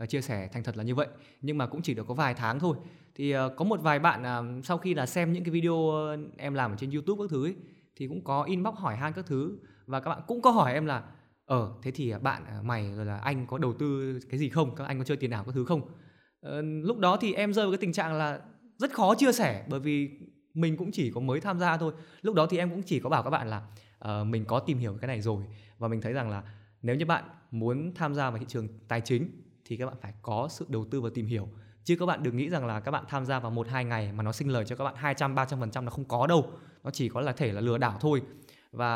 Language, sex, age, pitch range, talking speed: Vietnamese, male, 20-39, 115-160 Hz, 290 wpm